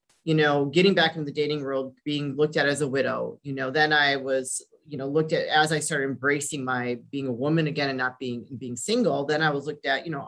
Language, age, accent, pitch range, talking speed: English, 30-49, American, 130-165 Hz, 255 wpm